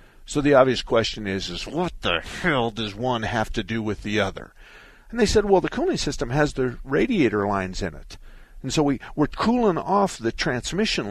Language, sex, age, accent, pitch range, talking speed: English, male, 50-69, American, 120-180 Hz, 205 wpm